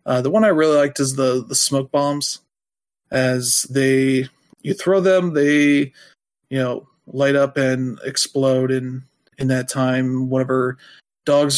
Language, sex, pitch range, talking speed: English, male, 130-145 Hz, 155 wpm